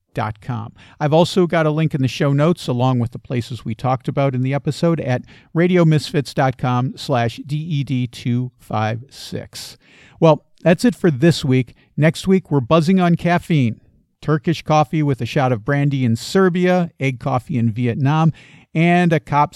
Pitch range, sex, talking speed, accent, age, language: 125-155 Hz, male, 155 wpm, American, 50-69, English